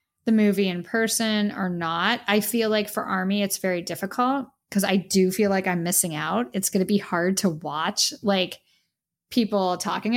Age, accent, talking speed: 10-29, American, 190 wpm